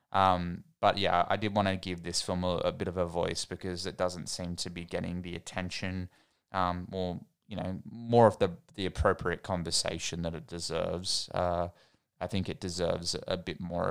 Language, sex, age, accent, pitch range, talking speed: English, male, 20-39, Australian, 90-105 Hz, 200 wpm